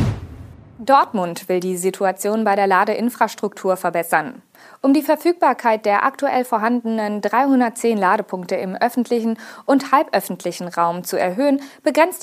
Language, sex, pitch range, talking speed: German, female, 185-255 Hz, 120 wpm